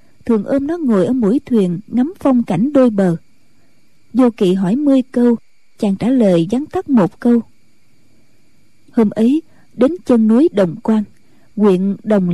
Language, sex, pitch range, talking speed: Vietnamese, female, 200-270 Hz, 160 wpm